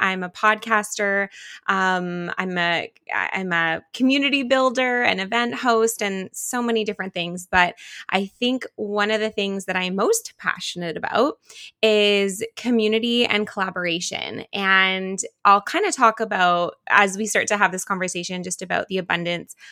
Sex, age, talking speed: female, 20-39, 155 wpm